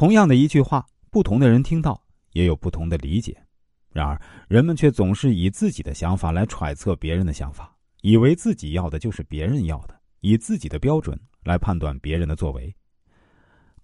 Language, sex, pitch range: Chinese, male, 85-125 Hz